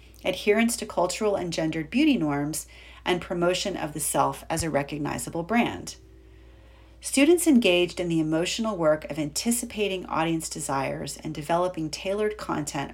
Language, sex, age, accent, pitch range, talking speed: English, female, 40-59, American, 145-200 Hz, 140 wpm